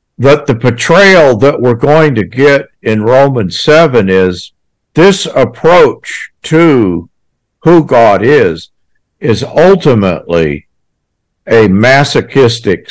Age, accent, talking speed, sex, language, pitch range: 60-79, American, 100 wpm, male, English, 100-140 Hz